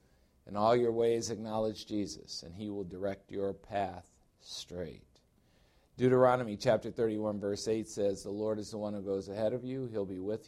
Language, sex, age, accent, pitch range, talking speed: English, male, 50-69, American, 90-120 Hz, 185 wpm